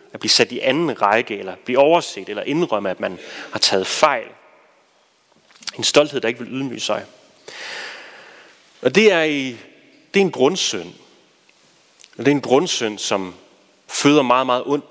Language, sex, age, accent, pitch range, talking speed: Danish, male, 30-49, native, 125-190 Hz, 150 wpm